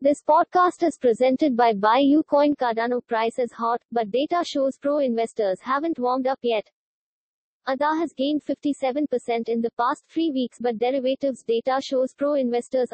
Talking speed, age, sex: 160 wpm, 20-39, female